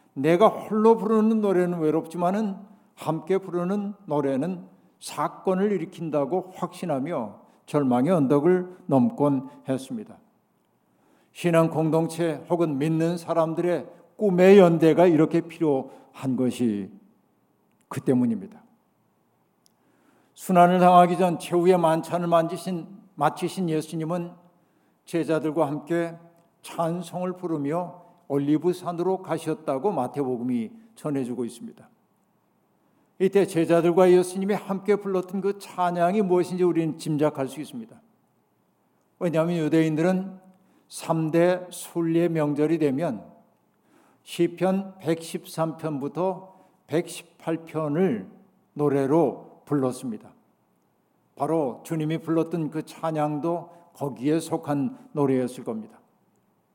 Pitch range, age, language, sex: 155-185 Hz, 50-69, Korean, male